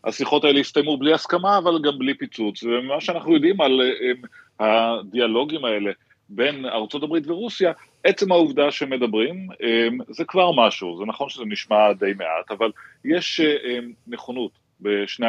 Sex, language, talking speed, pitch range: male, Hebrew, 145 wpm, 110-150 Hz